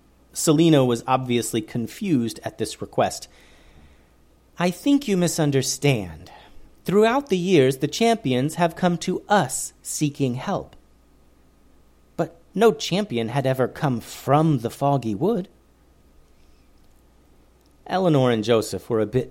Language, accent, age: English, American, 40-59